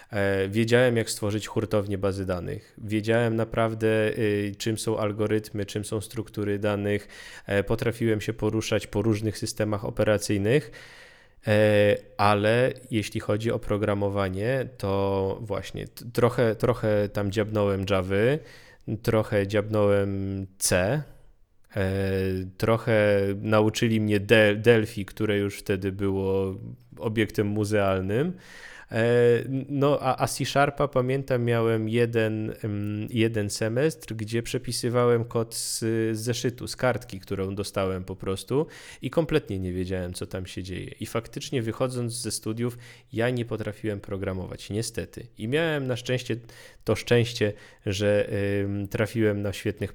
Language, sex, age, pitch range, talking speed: Polish, male, 20-39, 100-120 Hz, 115 wpm